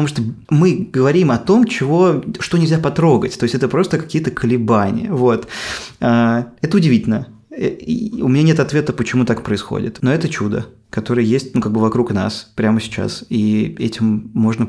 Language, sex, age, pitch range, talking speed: Russian, male, 20-39, 115-150 Hz, 155 wpm